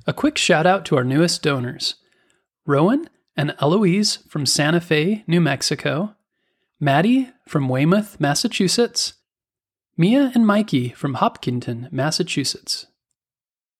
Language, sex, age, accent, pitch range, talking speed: English, male, 30-49, American, 135-205 Hz, 110 wpm